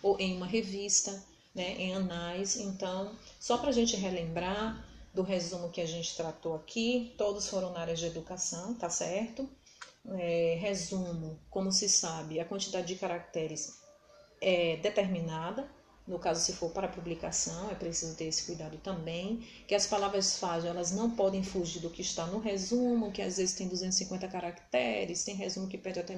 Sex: female